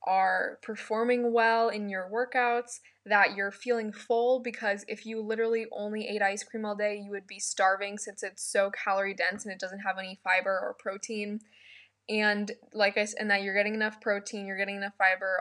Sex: female